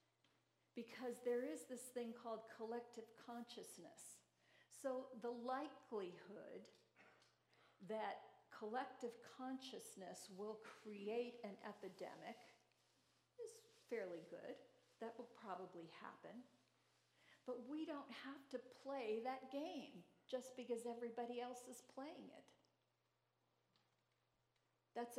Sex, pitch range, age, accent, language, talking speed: female, 210-255 Hz, 50-69, American, English, 100 wpm